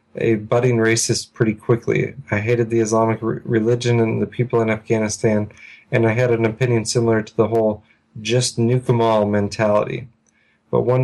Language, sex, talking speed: English, male, 170 wpm